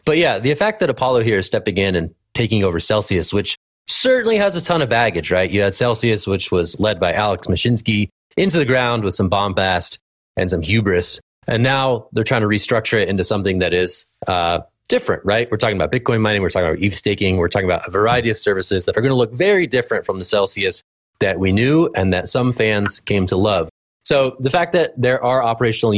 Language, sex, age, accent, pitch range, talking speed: English, male, 30-49, American, 95-120 Hz, 225 wpm